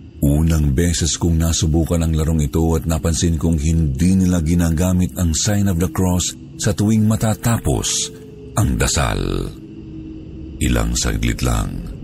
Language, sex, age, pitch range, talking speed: Filipino, male, 50-69, 80-100 Hz, 130 wpm